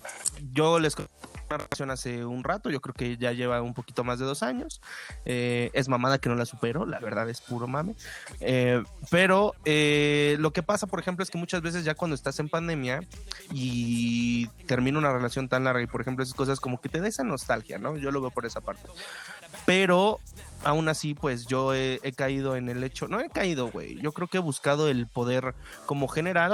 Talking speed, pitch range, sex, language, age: 215 wpm, 125-155 Hz, male, Spanish, 20-39